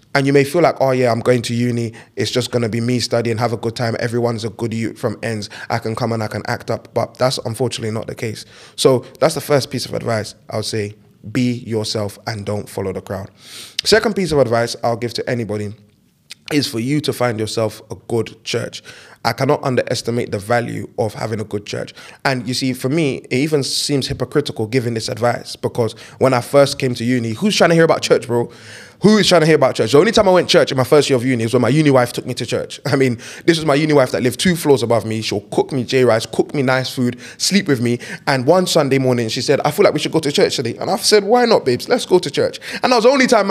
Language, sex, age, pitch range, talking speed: English, male, 20-39, 115-160 Hz, 270 wpm